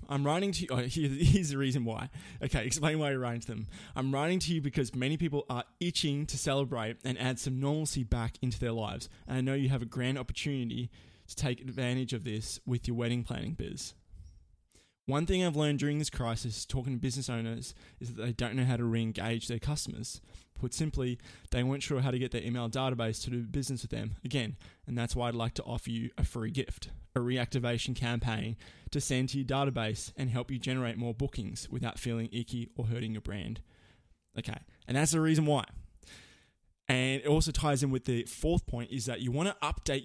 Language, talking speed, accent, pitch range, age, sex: English, 215 wpm, Australian, 115-135 Hz, 20-39, male